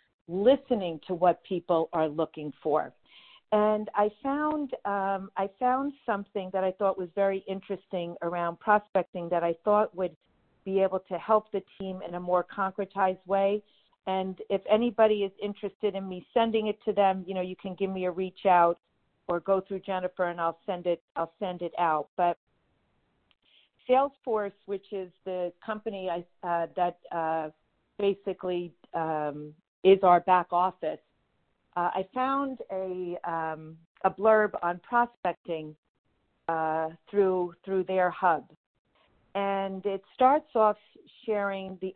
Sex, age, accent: female, 50-69, American